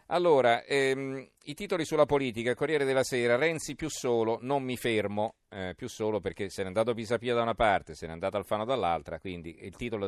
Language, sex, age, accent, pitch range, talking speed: Italian, male, 40-59, native, 105-135 Hz, 200 wpm